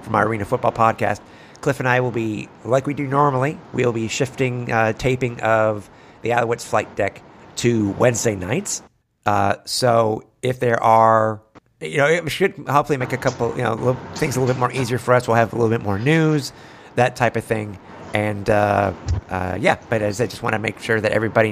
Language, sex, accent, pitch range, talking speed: English, male, American, 105-135 Hz, 210 wpm